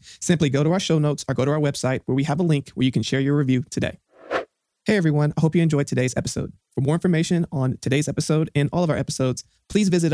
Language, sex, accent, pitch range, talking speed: English, male, American, 135-165 Hz, 260 wpm